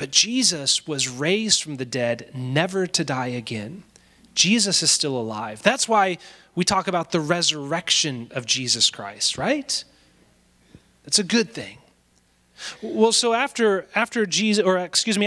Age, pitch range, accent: 30-49, 135-205 Hz, American